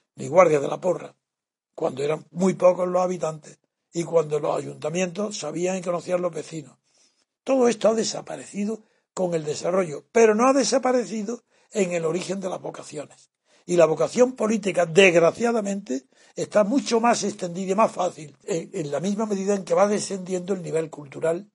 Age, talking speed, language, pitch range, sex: 60-79, 165 wpm, Spanish, 175-230 Hz, male